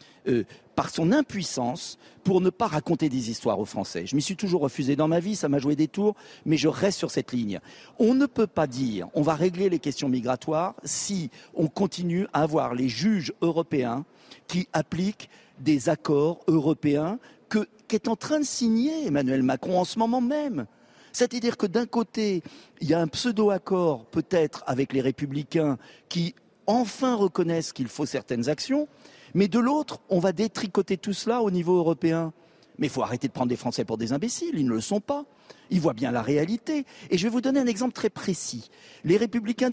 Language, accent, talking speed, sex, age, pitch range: French, French, 200 wpm, male, 50-69, 145-220 Hz